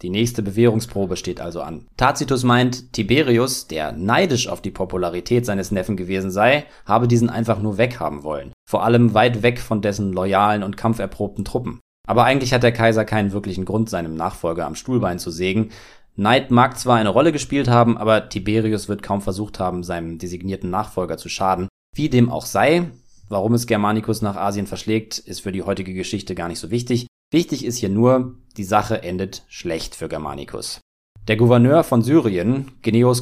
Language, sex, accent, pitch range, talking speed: German, male, German, 100-120 Hz, 180 wpm